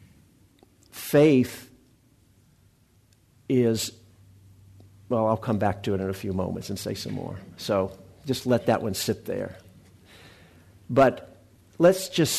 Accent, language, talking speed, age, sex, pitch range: American, English, 125 wpm, 50-69, male, 105-130 Hz